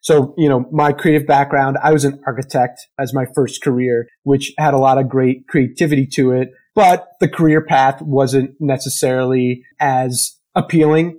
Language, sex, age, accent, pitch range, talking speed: English, male, 30-49, American, 130-150 Hz, 165 wpm